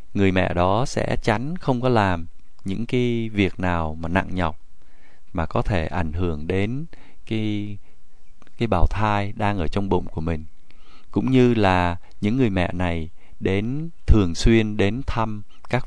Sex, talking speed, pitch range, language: male, 165 wpm, 90-115 Hz, Vietnamese